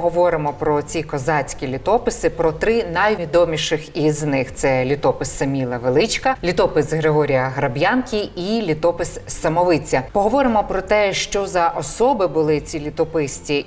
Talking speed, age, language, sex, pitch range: 130 wpm, 20-39, Ukrainian, female, 150-180 Hz